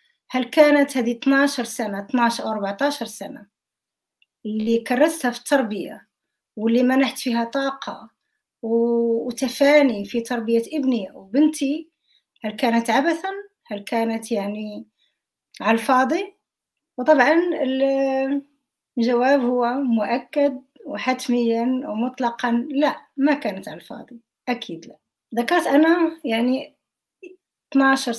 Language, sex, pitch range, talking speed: Arabic, female, 230-280 Hz, 100 wpm